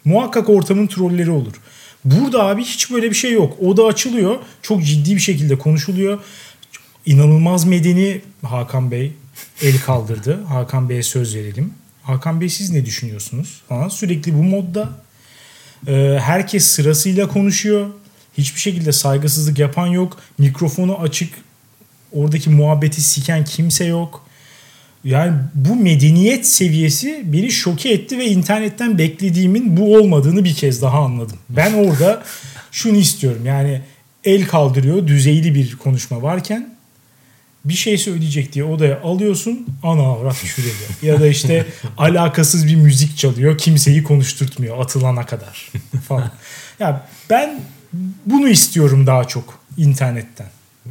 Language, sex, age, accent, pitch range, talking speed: Turkish, male, 40-59, native, 135-185 Hz, 125 wpm